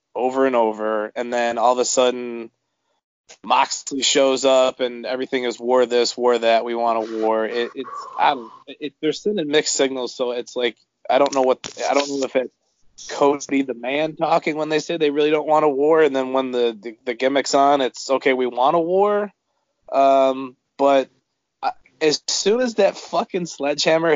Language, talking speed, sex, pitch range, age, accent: English, 195 wpm, male, 120-140 Hz, 20-39, American